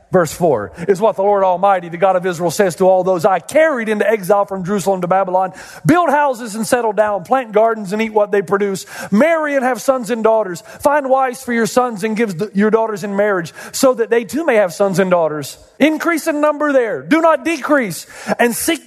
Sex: male